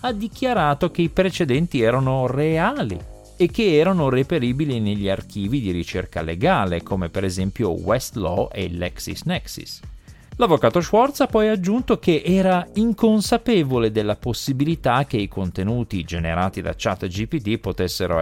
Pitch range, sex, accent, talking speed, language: 95-160 Hz, male, native, 130 wpm, Italian